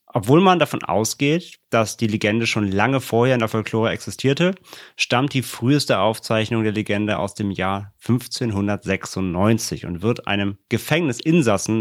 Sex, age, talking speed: male, 30-49, 140 wpm